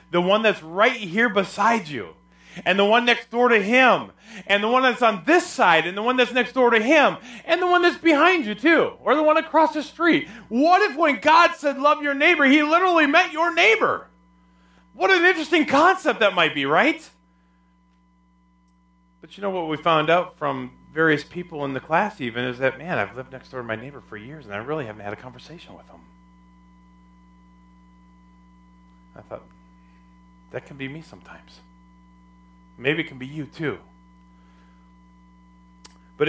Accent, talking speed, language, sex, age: American, 185 wpm, English, male, 40-59